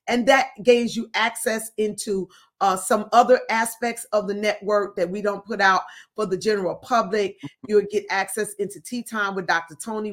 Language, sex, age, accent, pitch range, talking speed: English, female, 40-59, American, 190-225 Hz, 190 wpm